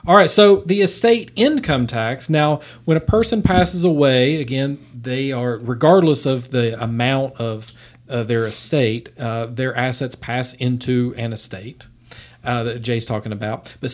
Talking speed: 160 wpm